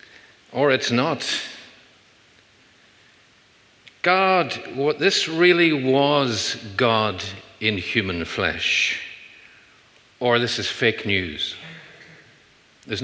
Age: 50-69